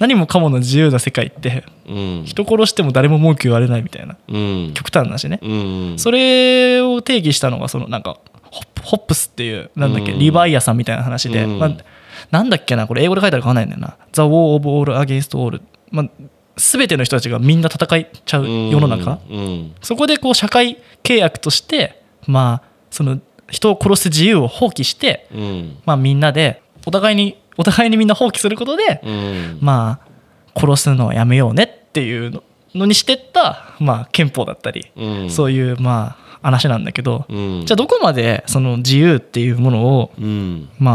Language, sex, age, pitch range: Japanese, male, 20-39, 115-190 Hz